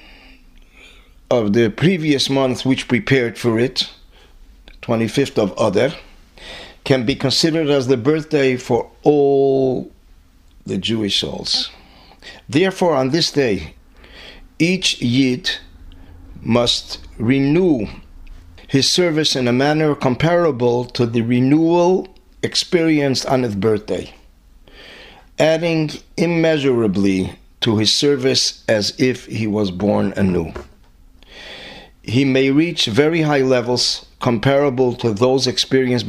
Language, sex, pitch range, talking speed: English, male, 100-140 Hz, 105 wpm